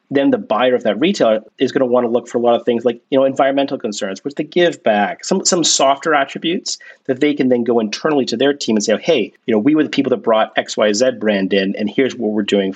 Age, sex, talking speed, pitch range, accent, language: 40-59, male, 285 wpm, 110-140 Hz, American, English